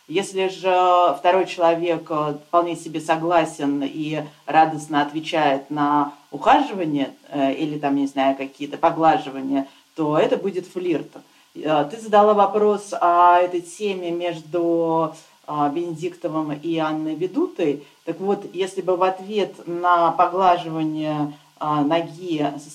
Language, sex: Russian, female